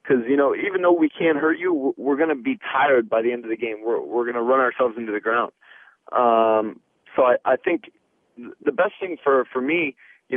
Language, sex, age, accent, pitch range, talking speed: English, male, 30-49, American, 120-155 Hz, 245 wpm